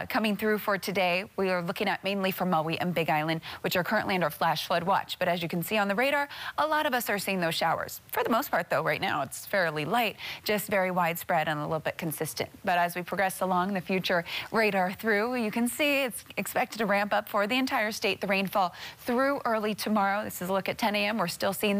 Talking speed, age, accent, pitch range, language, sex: 250 wpm, 30-49, American, 175-220 Hz, English, female